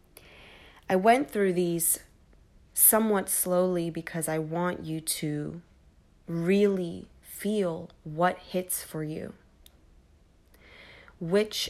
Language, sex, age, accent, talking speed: English, female, 20-39, American, 90 wpm